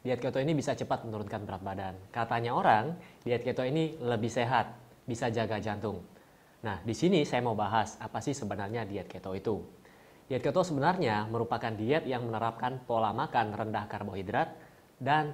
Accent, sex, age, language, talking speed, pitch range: native, male, 20-39, Indonesian, 165 wpm, 110-140 Hz